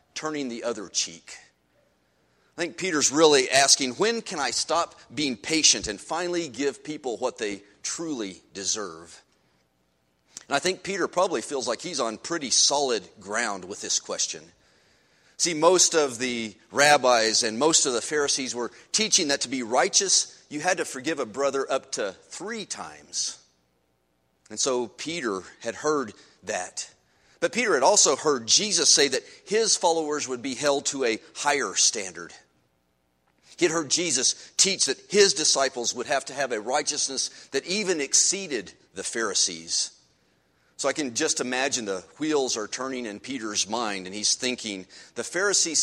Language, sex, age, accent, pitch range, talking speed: English, male, 30-49, American, 100-165 Hz, 160 wpm